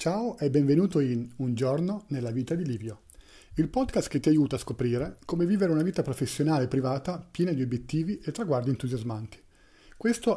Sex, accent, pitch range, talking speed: male, native, 130-170 Hz, 180 wpm